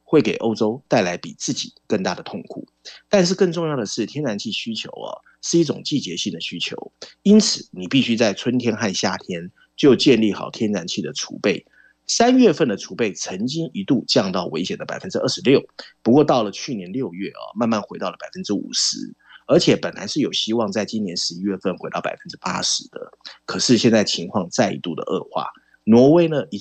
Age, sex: 30-49, male